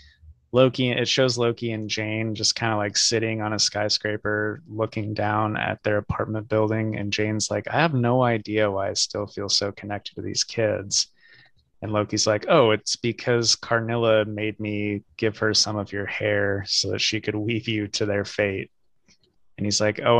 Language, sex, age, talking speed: English, male, 20-39, 190 wpm